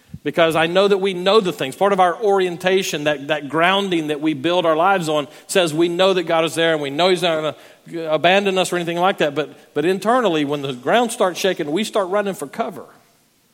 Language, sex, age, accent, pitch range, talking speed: English, male, 40-59, American, 130-180 Hz, 240 wpm